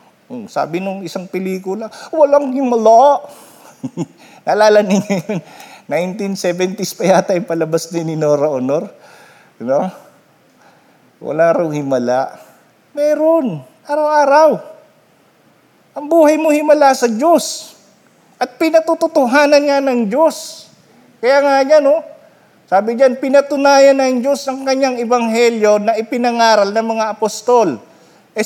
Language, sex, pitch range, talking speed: Filipino, male, 205-280 Hz, 110 wpm